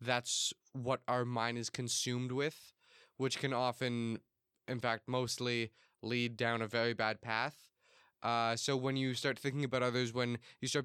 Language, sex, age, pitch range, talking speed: English, male, 20-39, 115-130 Hz, 165 wpm